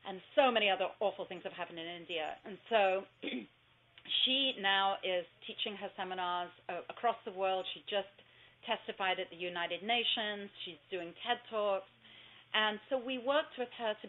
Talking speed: 165 wpm